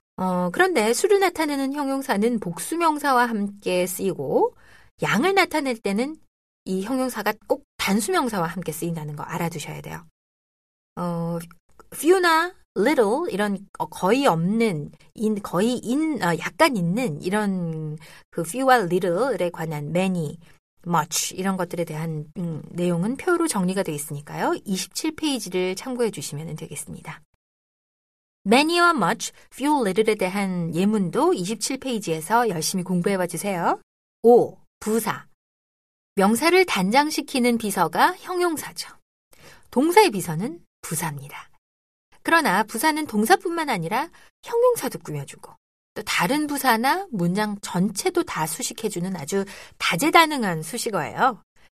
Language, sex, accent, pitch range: Korean, female, native, 175-285 Hz